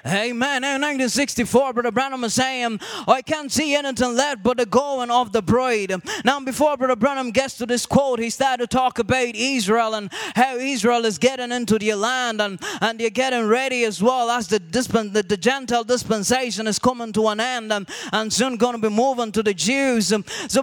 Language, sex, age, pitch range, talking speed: English, male, 20-39, 230-265 Hz, 205 wpm